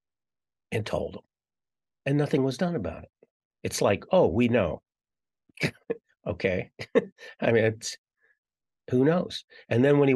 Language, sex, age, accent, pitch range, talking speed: English, male, 50-69, American, 95-125 Hz, 140 wpm